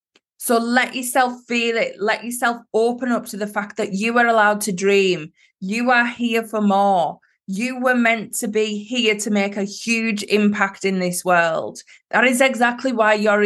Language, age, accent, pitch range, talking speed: English, 20-39, British, 185-230 Hz, 185 wpm